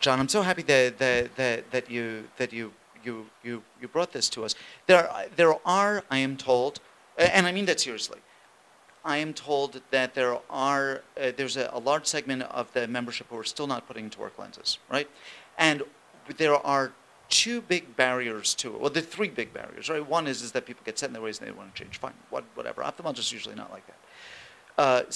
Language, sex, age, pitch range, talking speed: English, male, 40-59, 125-165 Hz, 220 wpm